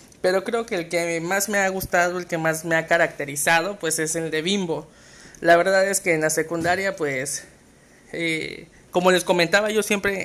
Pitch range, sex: 160-195 Hz, male